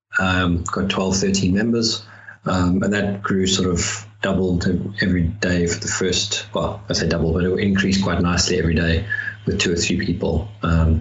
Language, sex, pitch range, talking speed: English, male, 95-105 Hz, 185 wpm